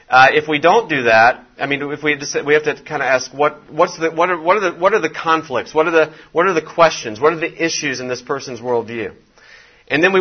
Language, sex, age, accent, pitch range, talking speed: English, male, 40-59, American, 115-155 Hz, 275 wpm